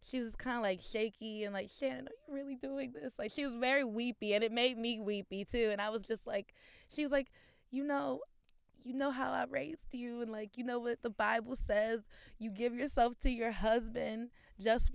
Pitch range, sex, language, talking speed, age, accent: 185-240 Hz, female, English, 225 wpm, 20-39, American